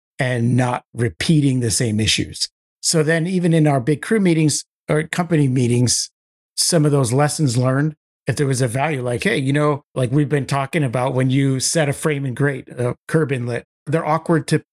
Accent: American